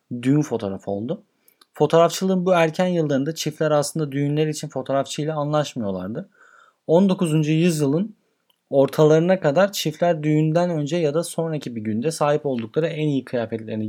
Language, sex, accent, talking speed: Turkish, male, native, 130 wpm